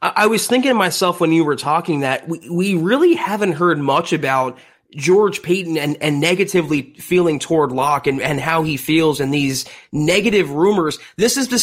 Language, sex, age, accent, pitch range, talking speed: English, male, 30-49, American, 150-195 Hz, 190 wpm